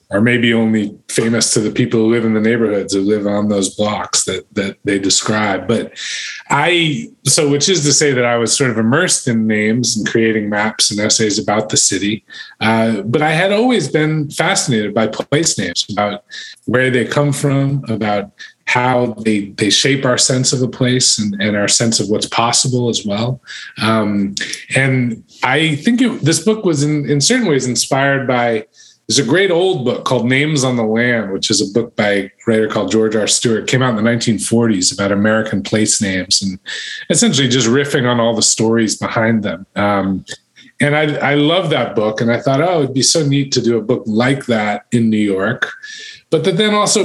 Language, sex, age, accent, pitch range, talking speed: English, male, 20-39, American, 110-140 Hz, 205 wpm